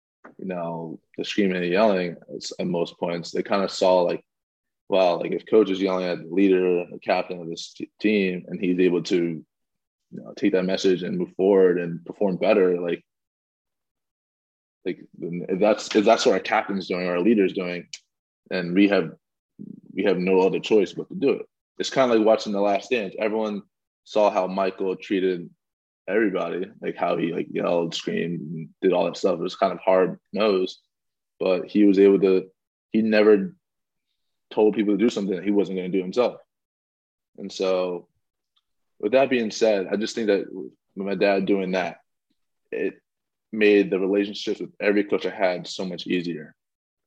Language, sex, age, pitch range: English, male, 20-39, 90-100 Hz